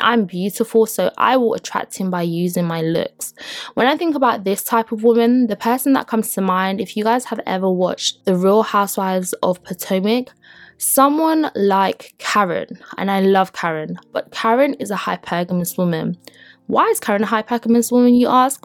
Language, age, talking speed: English, 20-39, 185 wpm